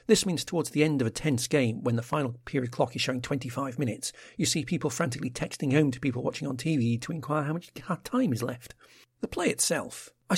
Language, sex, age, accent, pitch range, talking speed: English, male, 50-69, British, 125-185 Hz, 230 wpm